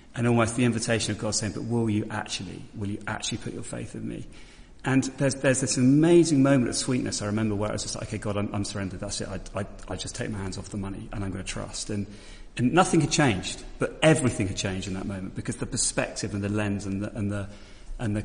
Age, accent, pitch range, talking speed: 30-49, British, 100-115 Hz, 265 wpm